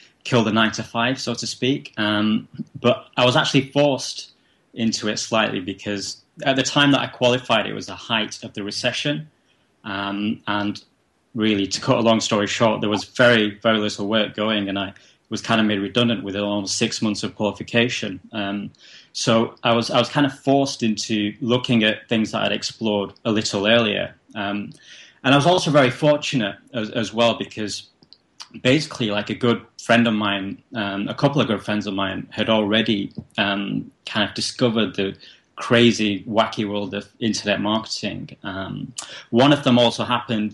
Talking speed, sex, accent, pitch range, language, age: 185 wpm, male, British, 105-120 Hz, English, 20-39